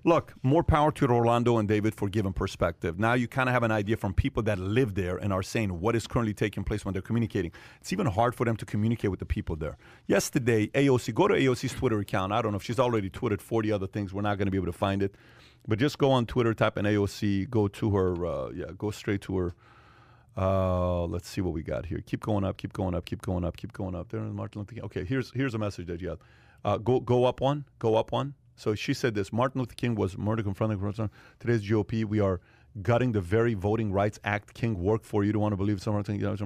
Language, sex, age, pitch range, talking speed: English, male, 40-59, 100-120 Hz, 250 wpm